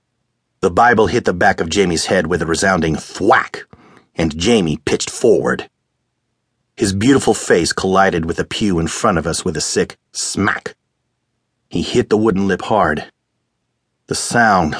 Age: 40-59